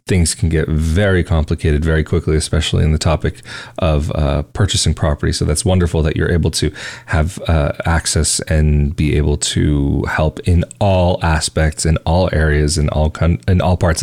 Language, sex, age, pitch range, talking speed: English, male, 30-49, 80-100 Hz, 170 wpm